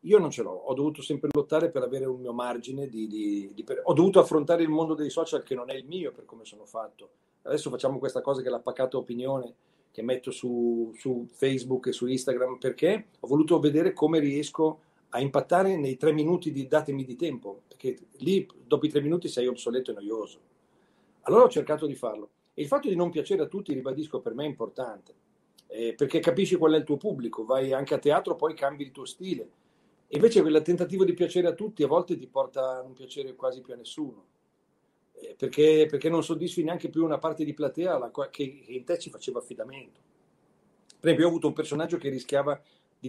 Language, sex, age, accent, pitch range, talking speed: Italian, male, 40-59, native, 130-170 Hz, 210 wpm